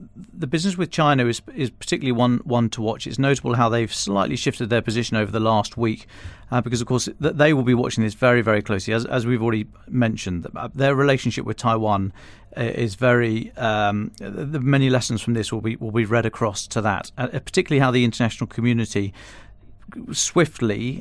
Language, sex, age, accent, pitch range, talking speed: English, male, 40-59, British, 110-130 Hz, 195 wpm